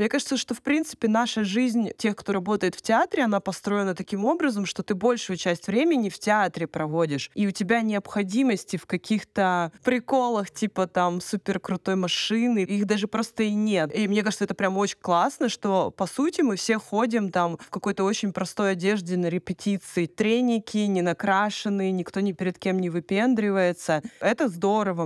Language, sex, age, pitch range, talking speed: Russian, female, 20-39, 180-220 Hz, 175 wpm